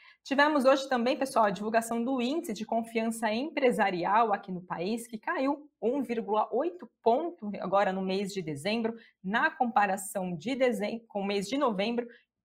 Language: Portuguese